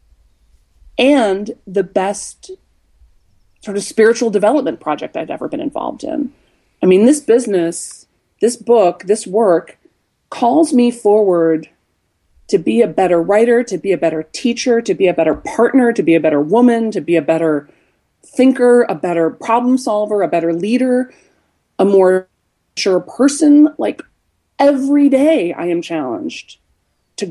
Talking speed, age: 150 wpm, 30-49